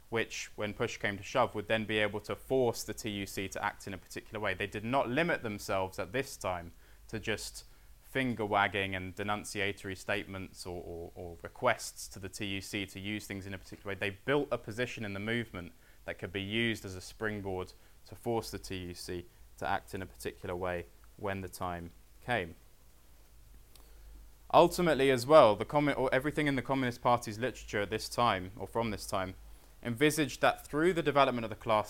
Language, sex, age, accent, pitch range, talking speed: English, male, 20-39, British, 95-125 Hz, 185 wpm